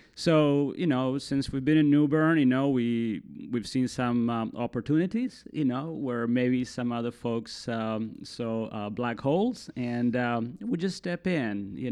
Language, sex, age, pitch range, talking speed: English, male, 30-49, 110-130 Hz, 185 wpm